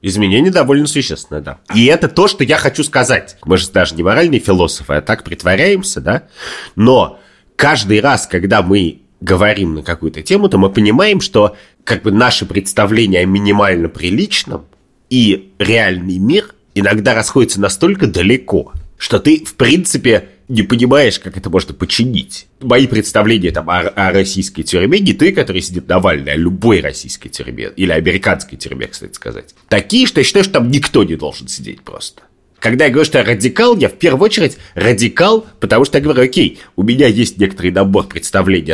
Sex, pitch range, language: male, 95-135 Hz, Russian